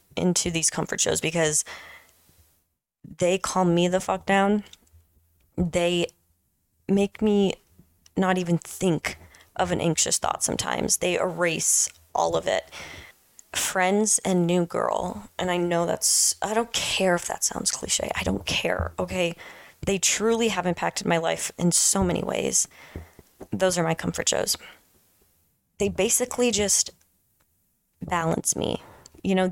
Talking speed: 140 wpm